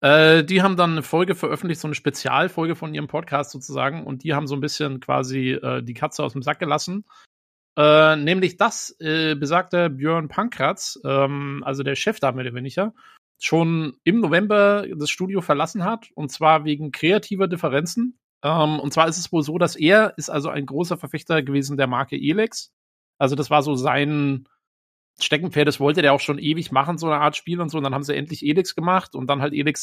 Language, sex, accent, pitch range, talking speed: German, male, German, 135-165 Hz, 205 wpm